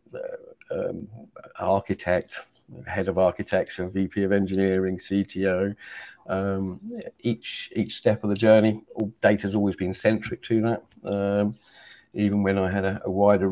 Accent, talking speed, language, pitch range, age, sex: British, 140 wpm, English, 95-110 Hz, 50-69, male